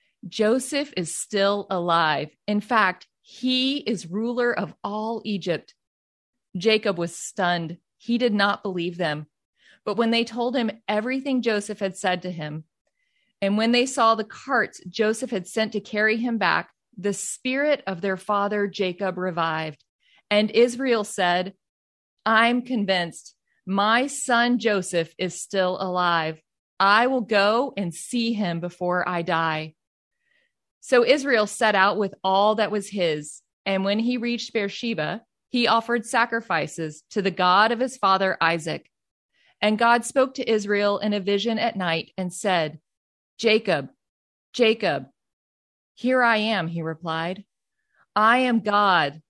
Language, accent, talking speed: English, American, 140 wpm